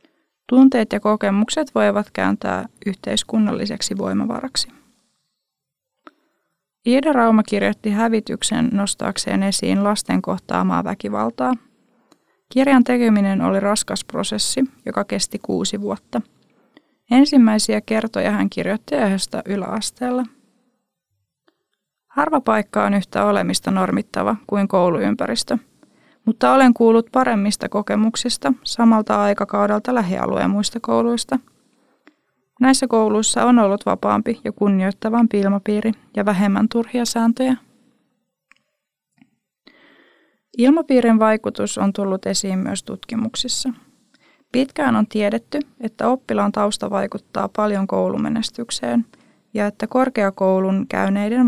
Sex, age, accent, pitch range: female, 20-39, native, 200-245 Hz